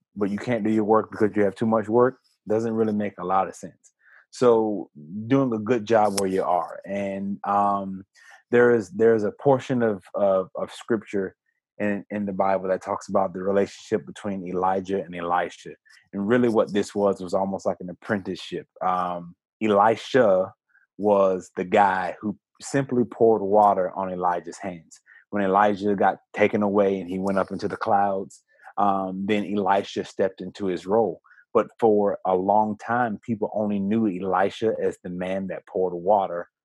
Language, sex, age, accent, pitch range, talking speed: English, male, 30-49, American, 95-110 Hz, 175 wpm